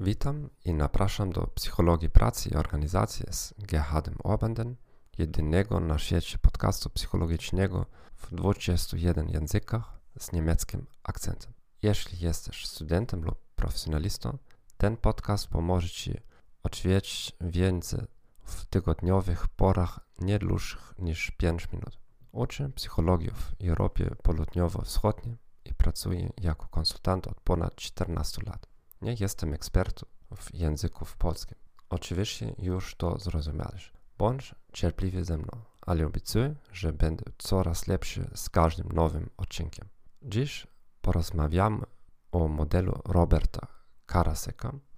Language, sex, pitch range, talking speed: Polish, male, 85-105 Hz, 115 wpm